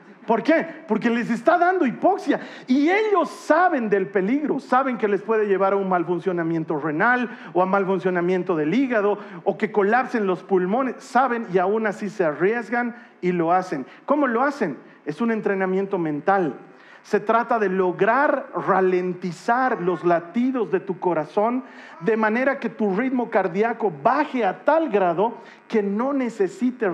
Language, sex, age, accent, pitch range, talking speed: Spanish, male, 40-59, Mexican, 190-265 Hz, 160 wpm